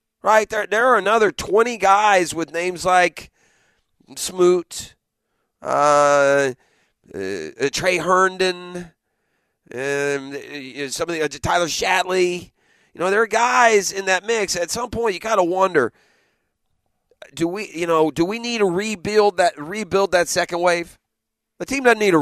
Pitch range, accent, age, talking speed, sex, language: 120-180 Hz, American, 40-59, 145 wpm, male, English